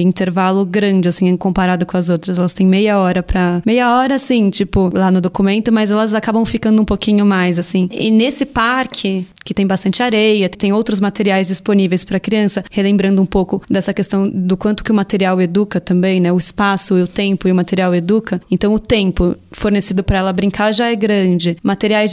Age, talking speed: 20-39, 200 wpm